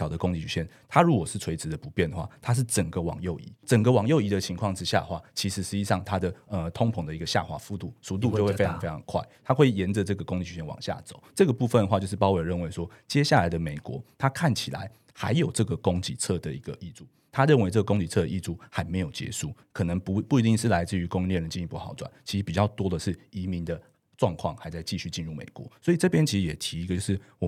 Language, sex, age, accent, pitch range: Chinese, male, 30-49, native, 85-120 Hz